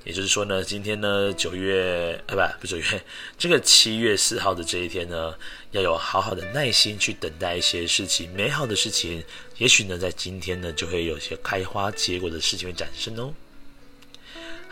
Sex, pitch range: male, 90-120 Hz